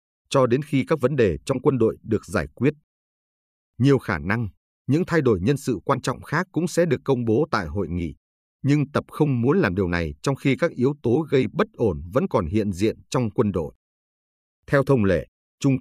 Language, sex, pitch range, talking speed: Vietnamese, male, 90-140 Hz, 215 wpm